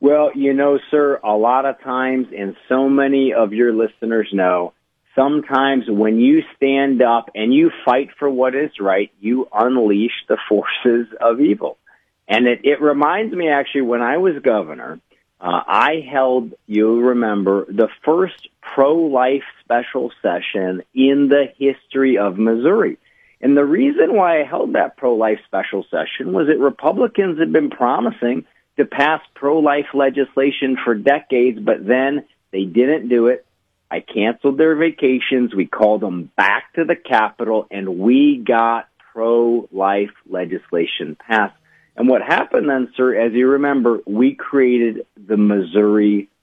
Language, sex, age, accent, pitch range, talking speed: English, male, 40-59, American, 110-140 Hz, 150 wpm